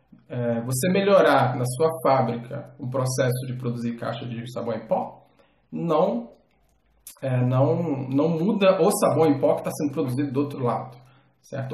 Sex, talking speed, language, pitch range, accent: male, 165 wpm, Portuguese, 130-180 Hz, Brazilian